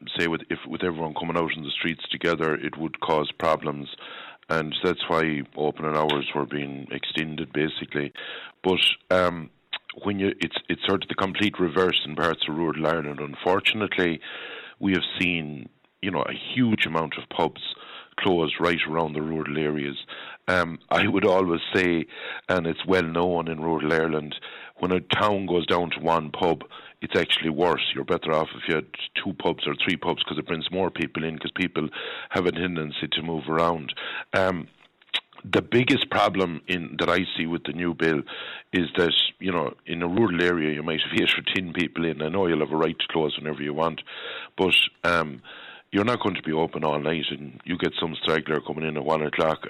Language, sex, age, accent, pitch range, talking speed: English, male, 60-79, Irish, 75-90 Hz, 195 wpm